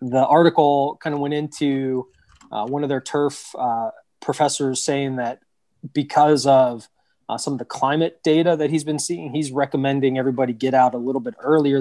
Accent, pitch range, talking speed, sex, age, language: American, 125-145 Hz, 185 wpm, male, 20-39, English